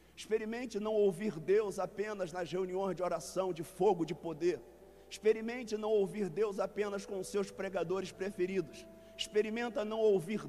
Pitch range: 185-215 Hz